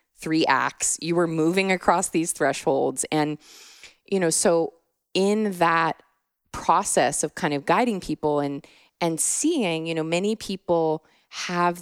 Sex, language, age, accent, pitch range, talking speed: female, English, 20-39, American, 155-195 Hz, 140 wpm